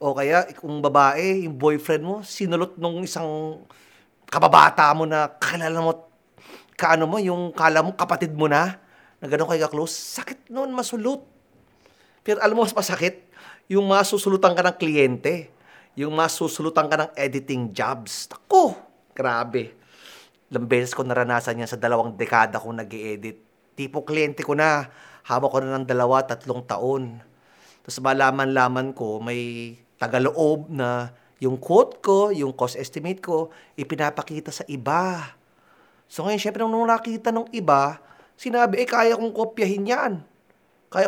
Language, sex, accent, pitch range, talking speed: Filipino, male, native, 145-230 Hz, 145 wpm